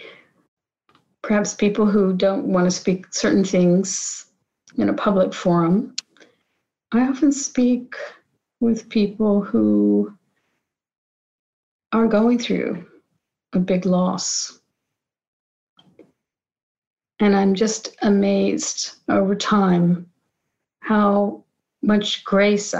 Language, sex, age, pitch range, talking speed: English, female, 50-69, 185-220 Hz, 90 wpm